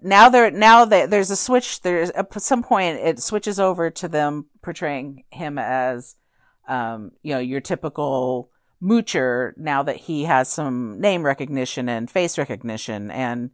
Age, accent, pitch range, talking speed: 50-69, American, 130-170 Hz, 165 wpm